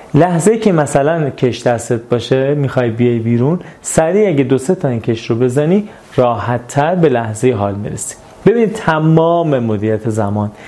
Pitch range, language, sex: 120-150 Hz, Persian, male